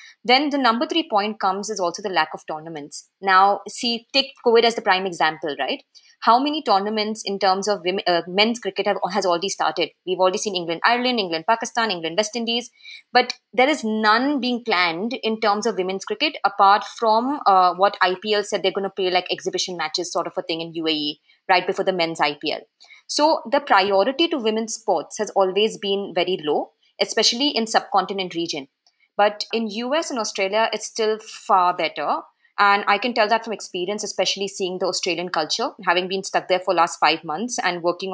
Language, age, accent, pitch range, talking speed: English, 20-39, Indian, 185-225 Hz, 195 wpm